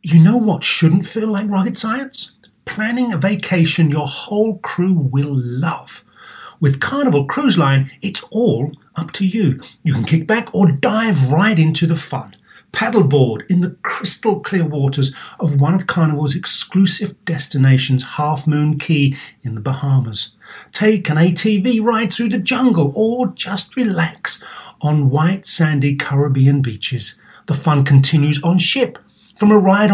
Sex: male